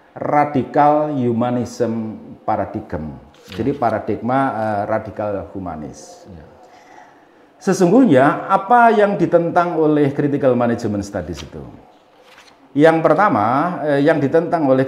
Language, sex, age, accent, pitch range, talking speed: Indonesian, male, 40-59, native, 125-185 Hz, 95 wpm